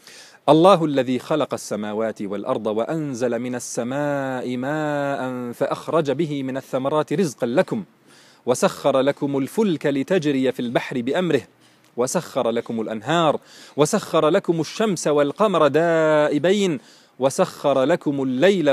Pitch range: 120-155 Hz